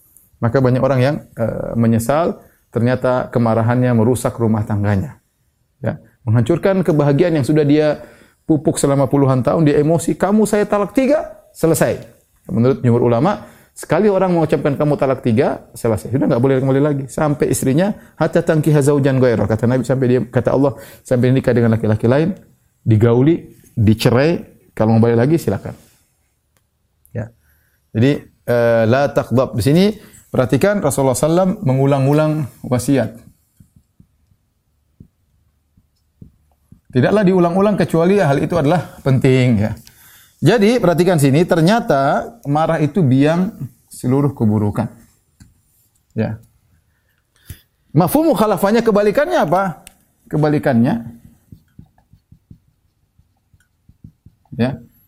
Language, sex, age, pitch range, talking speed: Indonesian, male, 30-49, 115-165 Hz, 110 wpm